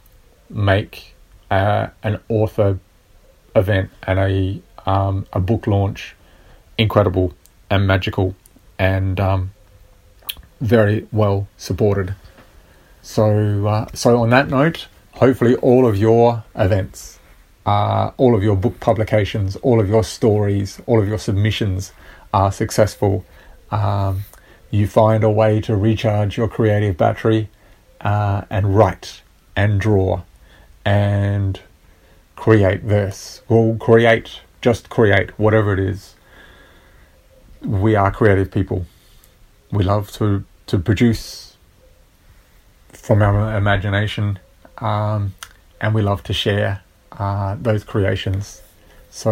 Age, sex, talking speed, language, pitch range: 40-59, male, 115 wpm, English, 95-110 Hz